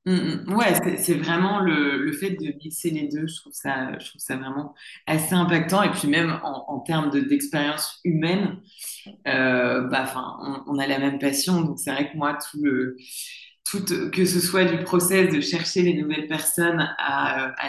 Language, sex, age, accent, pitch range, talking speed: French, female, 20-39, French, 140-175 Hz, 195 wpm